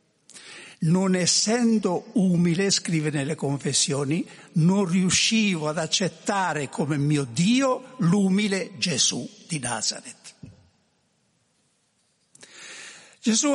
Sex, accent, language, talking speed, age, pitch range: male, native, Italian, 80 wpm, 60-79, 165-220 Hz